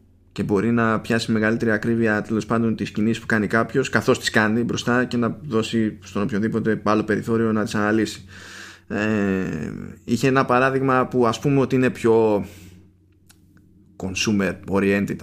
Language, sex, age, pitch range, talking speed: Greek, male, 20-39, 95-115 Hz, 150 wpm